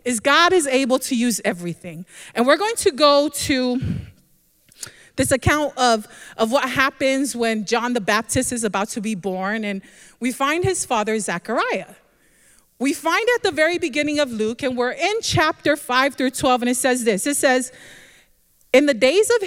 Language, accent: English, American